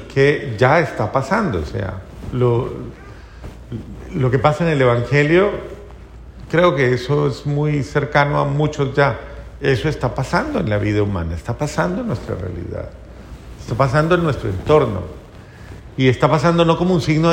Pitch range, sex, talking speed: 115-150 Hz, male, 160 wpm